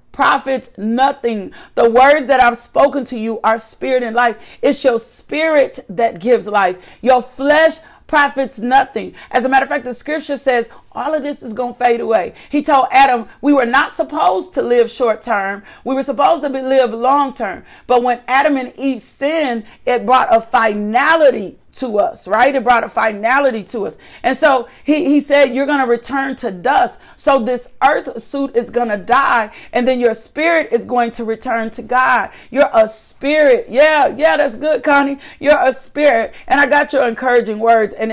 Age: 40-59